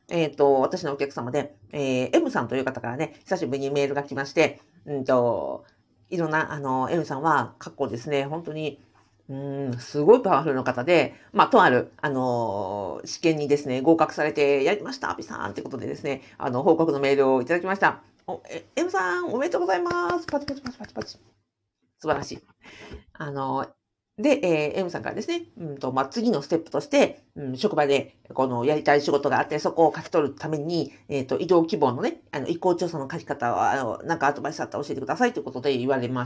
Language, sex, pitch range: Japanese, female, 130-180 Hz